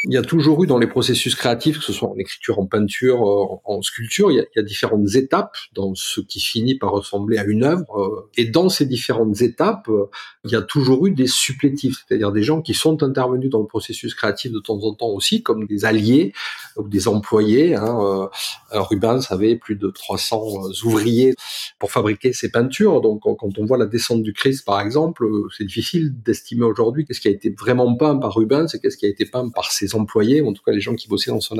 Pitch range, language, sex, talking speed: 105-145 Hz, French, male, 230 wpm